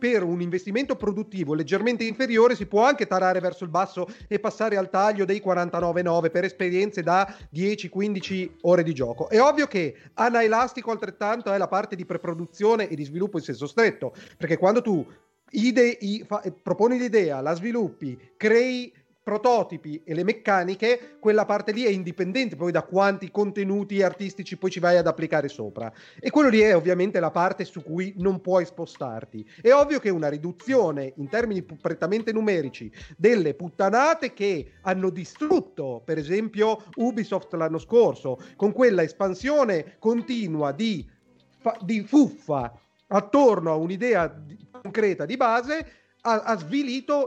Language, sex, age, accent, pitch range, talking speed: Italian, male, 30-49, native, 170-225 Hz, 150 wpm